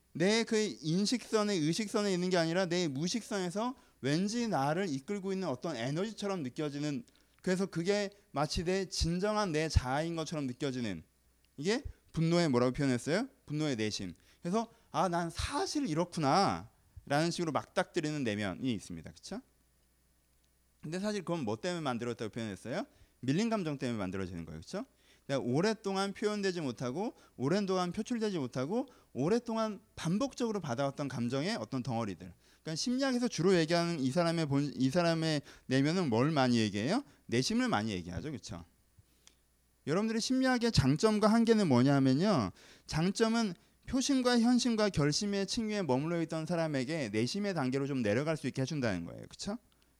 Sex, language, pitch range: male, Korean, 125-200 Hz